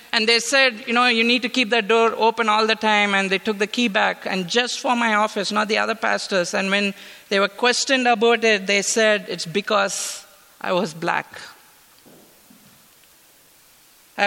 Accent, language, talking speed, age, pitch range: Indian, English, 190 wpm, 50-69, 215-255 Hz